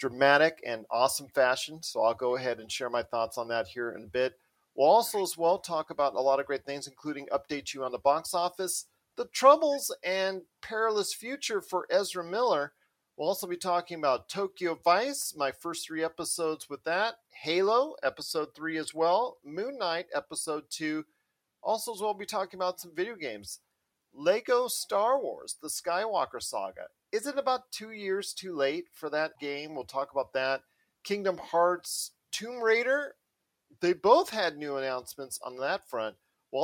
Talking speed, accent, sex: 175 wpm, American, male